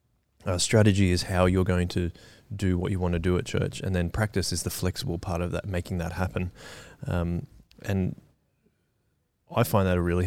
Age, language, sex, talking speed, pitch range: 20-39, English, male, 200 wpm, 90-105 Hz